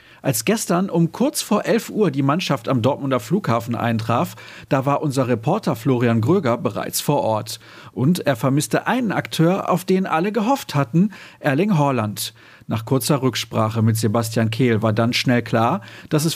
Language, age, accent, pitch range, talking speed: German, 40-59, German, 125-185 Hz, 170 wpm